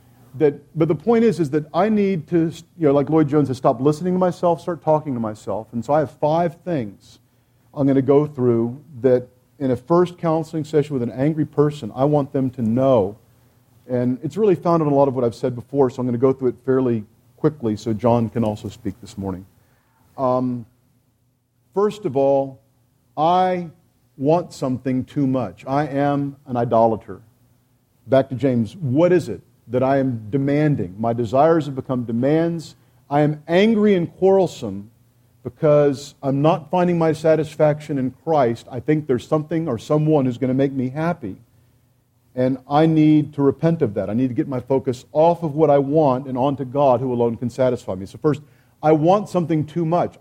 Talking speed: 195 wpm